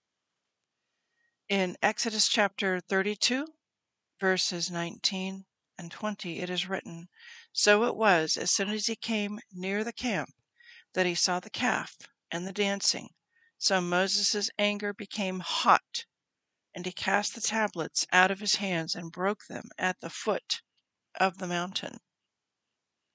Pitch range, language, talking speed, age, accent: 175-225 Hz, English, 135 wpm, 60-79, American